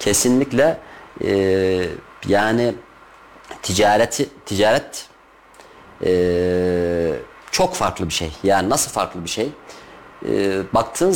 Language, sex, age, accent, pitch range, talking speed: Turkish, male, 40-59, native, 100-145 Hz, 95 wpm